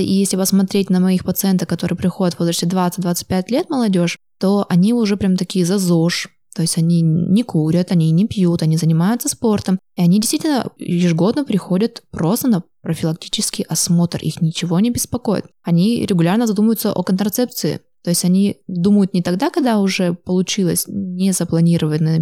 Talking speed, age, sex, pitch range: 155 wpm, 20-39, female, 170-205 Hz